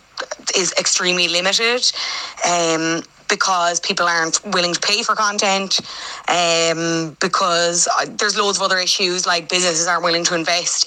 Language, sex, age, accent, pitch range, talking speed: English, female, 20-39, Irish, 170-195 Hz, 140 wpm